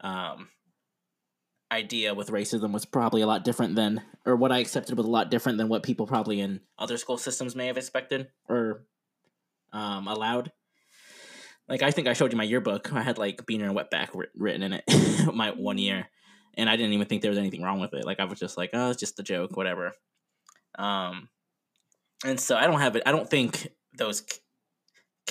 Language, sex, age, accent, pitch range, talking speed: English, male, 20-39, American, 105-125 Hz, 205 wpm